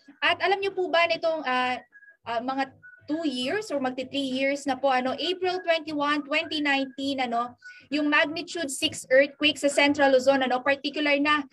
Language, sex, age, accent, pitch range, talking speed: Filipino, female, 20-39, native, 275-320 Hz, 165 wpm